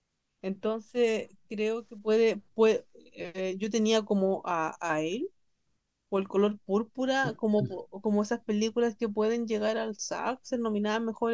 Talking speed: 150 wpm